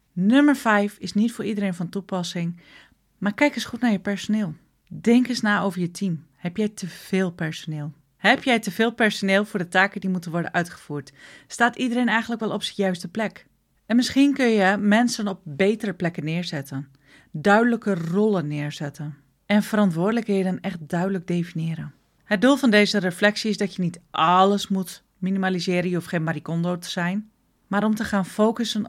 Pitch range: 170-220 Hz